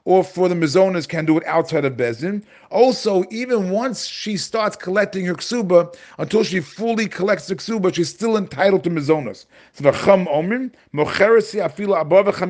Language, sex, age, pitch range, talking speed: English, male, 40-59, 150-200 Hz, 140 wpm